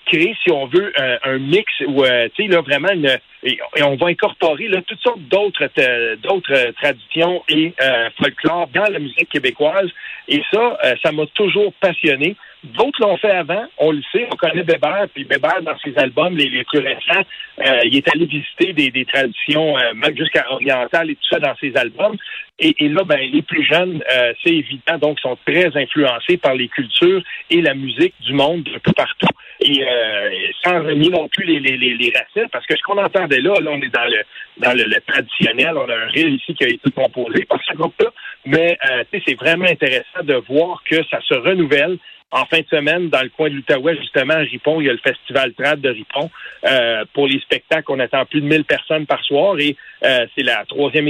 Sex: male